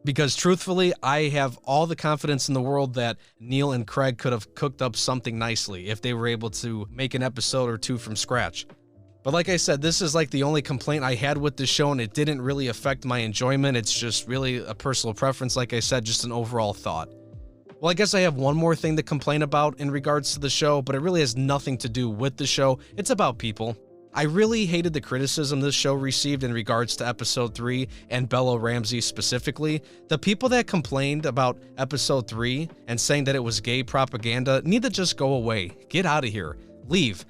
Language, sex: English, male